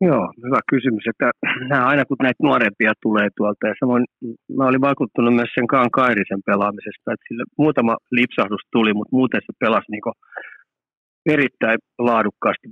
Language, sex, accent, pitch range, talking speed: Finnish, male, native, 110-135 Hz, 145 wpm